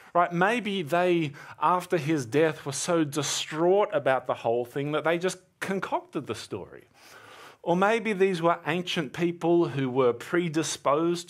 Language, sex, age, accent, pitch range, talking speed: English, male, 30-49, Australian, 135-175 Hz, 150 wpm